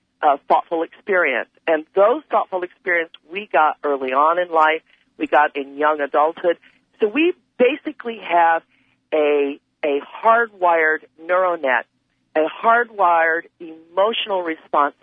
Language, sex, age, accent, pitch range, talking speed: English, female, 50-69, American, 155-220 Hz, 125 wpm